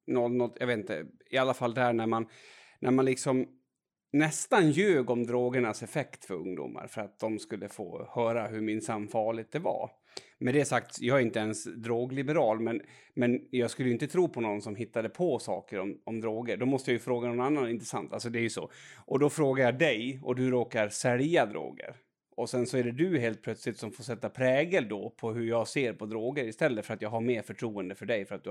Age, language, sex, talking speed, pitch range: 30-49, Swedish, male, 225 wpm, 115-150 Hz